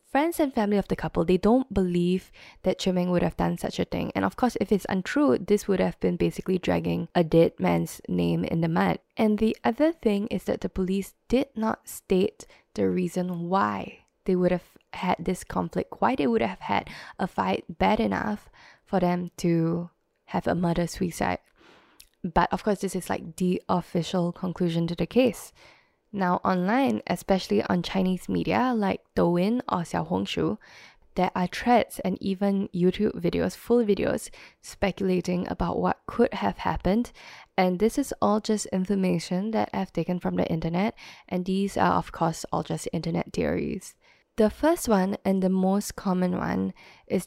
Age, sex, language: 10-29, female, English